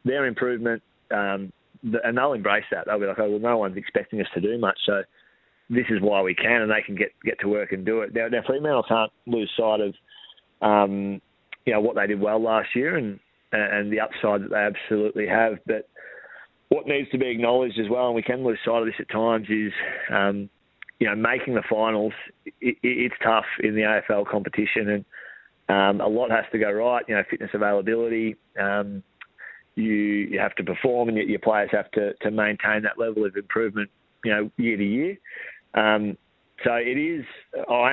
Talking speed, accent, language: 200 wpm, Australian, English